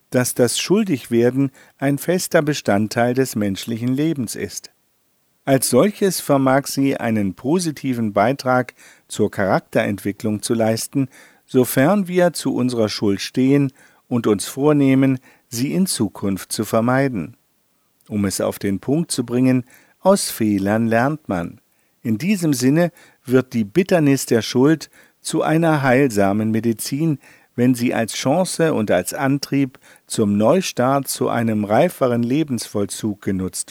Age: 50-69